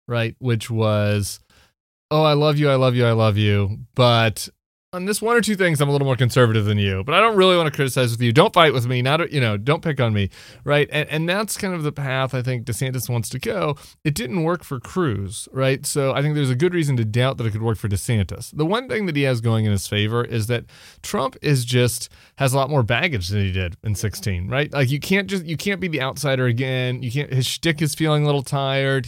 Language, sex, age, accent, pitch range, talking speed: English, male, 30-49, American, 120-150 Hz, 260 wpm